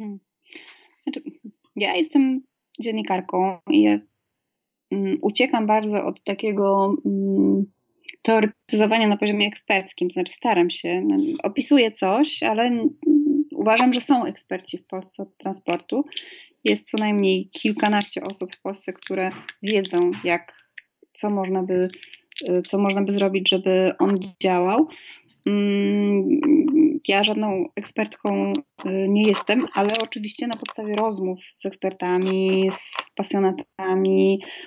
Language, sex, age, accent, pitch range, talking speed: Polish, female, 20-39, native, 190-230 Hz, 115 wpm